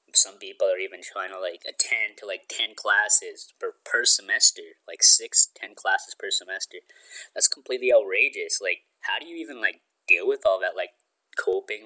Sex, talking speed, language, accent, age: male, 180 wpm, English, American, 20-39